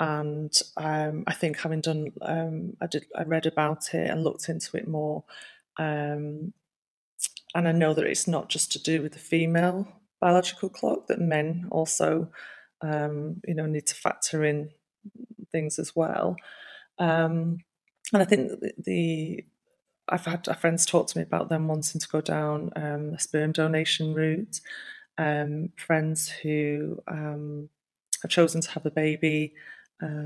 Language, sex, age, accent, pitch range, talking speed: English, female, 30-49, British, 150-175 Hz, 160 wpm